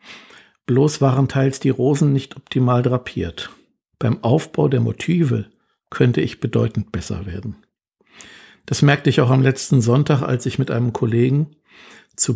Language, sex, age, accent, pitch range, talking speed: German, male, 60-79, German, 115-135 Hz, 145 wpm